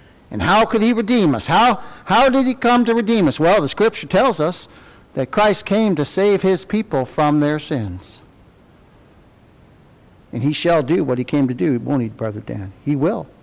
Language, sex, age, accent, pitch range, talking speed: English, male, 60-79, American, 150-210 Hz, 195 wpm